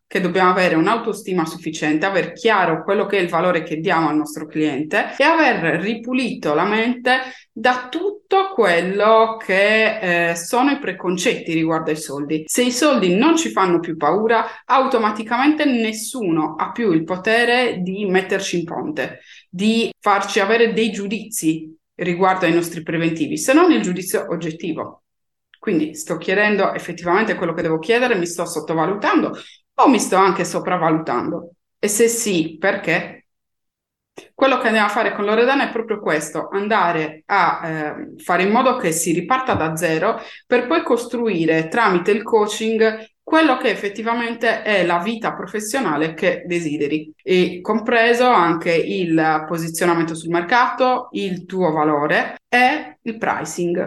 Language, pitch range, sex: Italian, 170-230 Hz, female